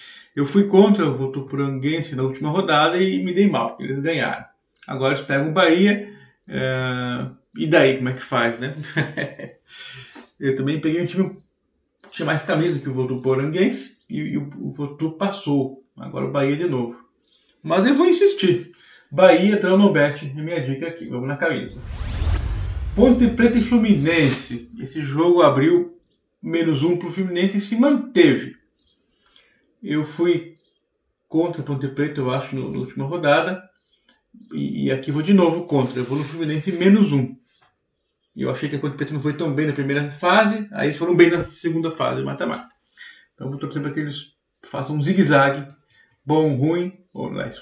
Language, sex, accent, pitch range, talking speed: Portuguese, male, Brazilian, 135-175 Hz, 175 wpm